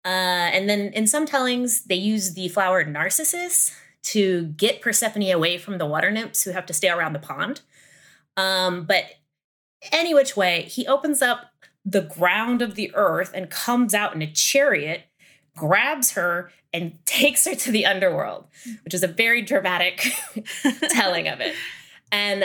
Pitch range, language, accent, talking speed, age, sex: 185-240 Hz, English, American, 165 wpm, 20-39, female